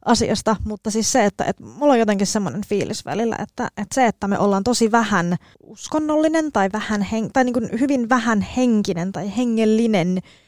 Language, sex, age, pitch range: Finnish, female, 20-39, 195-240 Hz